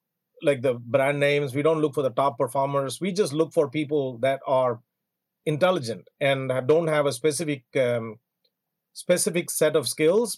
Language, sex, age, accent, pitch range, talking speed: English, male, 40-59, Indian, 135-165 Hz, 170 wpm